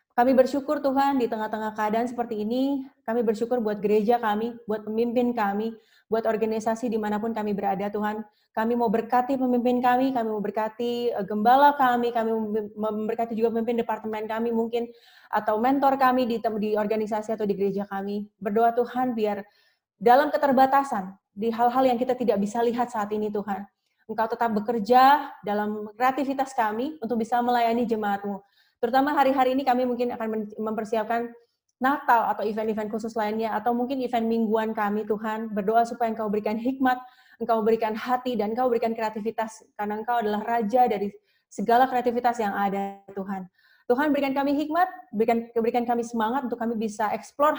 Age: 30-49